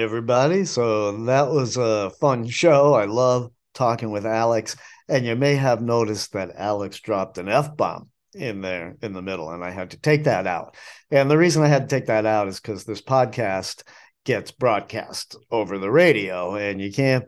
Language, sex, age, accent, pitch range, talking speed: English, male, 50-69, American, 110-140 Hz, 195 wpm